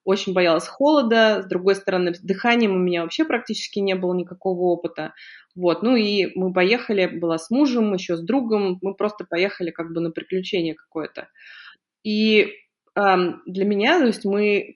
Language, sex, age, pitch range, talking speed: Russian, female, 20-39, 175-210 Hz, 170 wpm